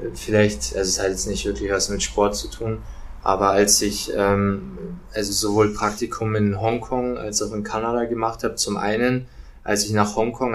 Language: German